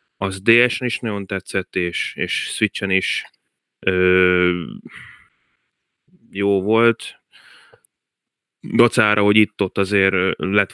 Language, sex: Hungarian, male